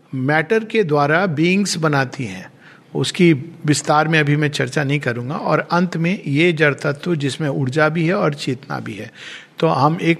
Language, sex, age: Hindi, male, 50-69